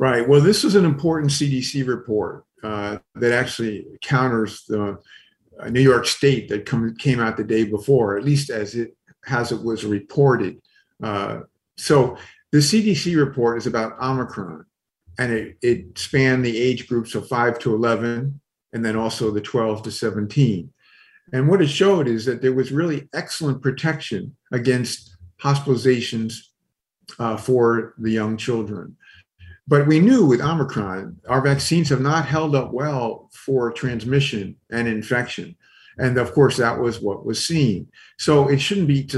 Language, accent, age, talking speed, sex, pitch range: English, American, 50-69, 155 wpm, male, 115-140 Hz